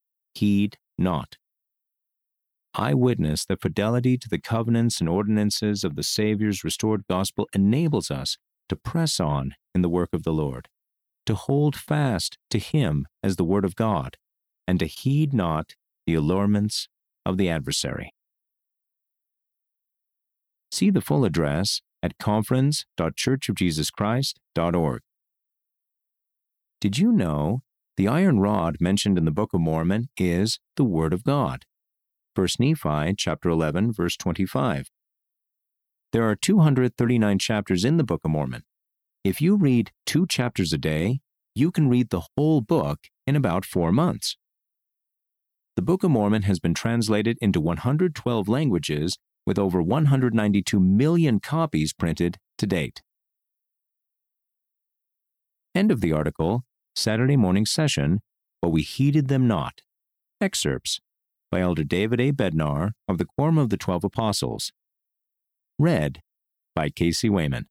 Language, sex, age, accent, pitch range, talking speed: English, male, 50-69, American, 85-125 Hz, 130 wpm